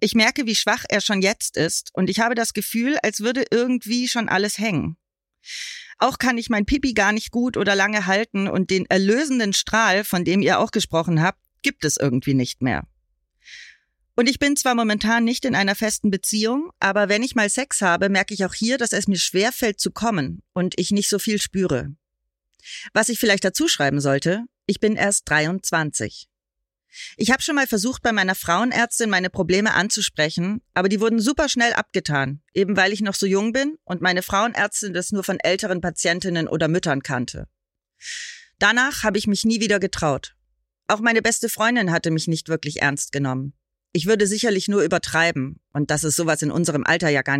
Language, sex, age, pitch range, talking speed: German, female, 30-49, 170-225 Hz, 195 wpm